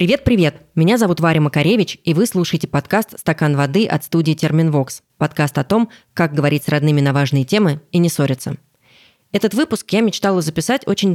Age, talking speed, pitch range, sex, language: 20-39, 180 wpm, 140-185 Hz, female, Russian